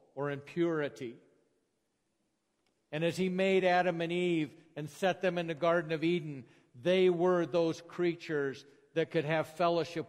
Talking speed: 150 wpm